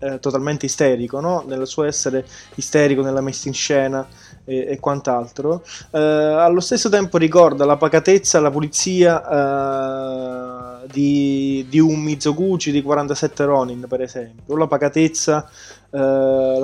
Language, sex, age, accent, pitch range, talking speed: Italian, male, 20-39, native, 130-155 Hz, 135 wpm